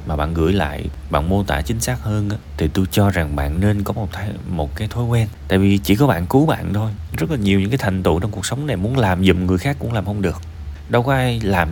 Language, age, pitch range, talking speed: Vietnamese, 20-39, 80-110 Hz, 270 wpm